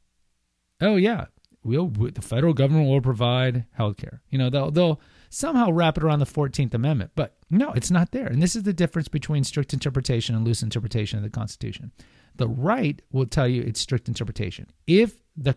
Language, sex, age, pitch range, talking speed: English, male, 40-59, 100-150 Hz, 195 wpm